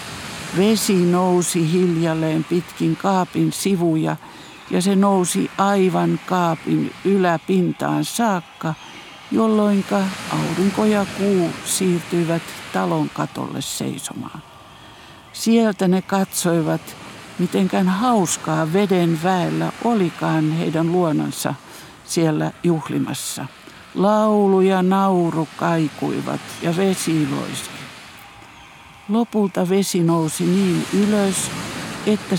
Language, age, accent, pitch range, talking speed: Finnish, 60-79, native, 165-200 Hz, 85 wpm